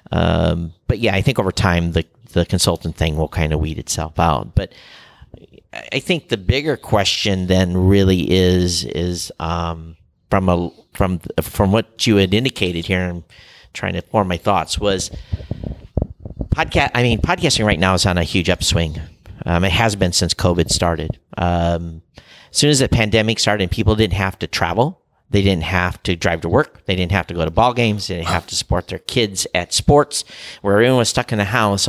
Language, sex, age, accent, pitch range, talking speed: English, male, 50-69, American, 90-110 Hz, 200 wpm